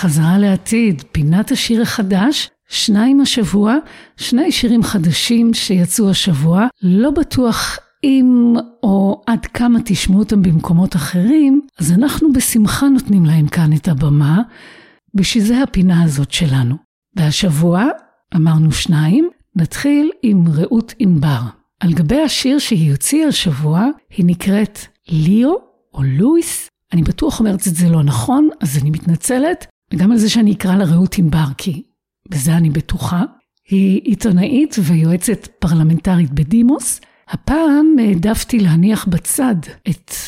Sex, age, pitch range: female, 50-69, 175-240 Hz